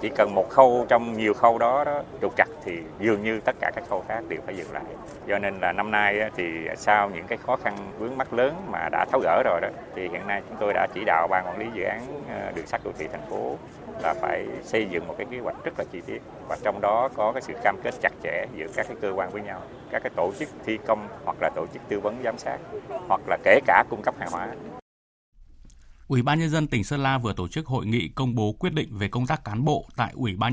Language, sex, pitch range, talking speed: Vietnamese, male, 105-135 Hz, 270 wpm